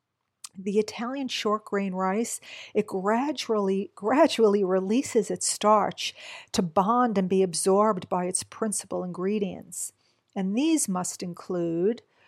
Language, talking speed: English, 115 wpm